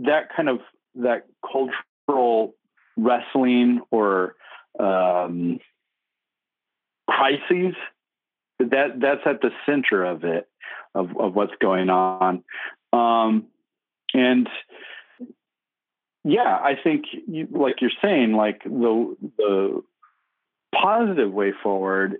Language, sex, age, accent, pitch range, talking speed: English, male, 40-59, American, 100-130 Hz, 95 wpm